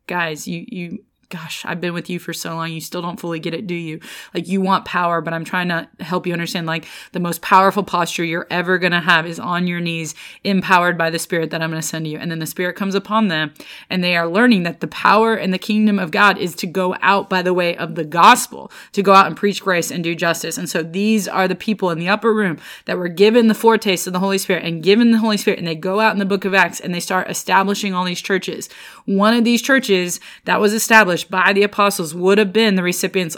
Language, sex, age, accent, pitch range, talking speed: English, female, 30-49, American, 175-210 Hz, 260 wpm